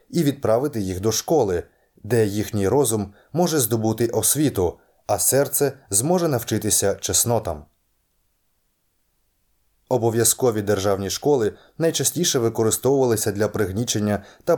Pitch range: 100-125 Hz